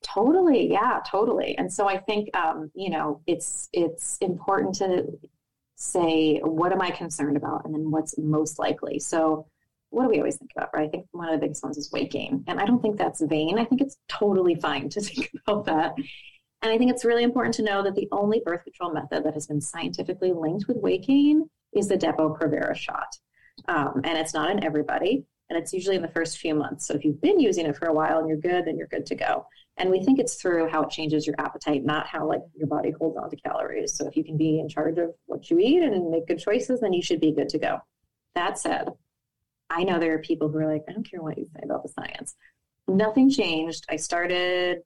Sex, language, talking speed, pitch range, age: female, English, 240 wpm, 155-210 Hz, 30-49